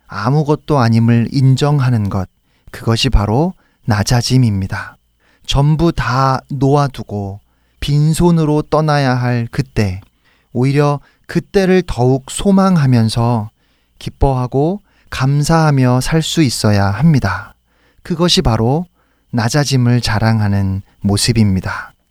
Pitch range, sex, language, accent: 115-155 Hz, male, Korean, native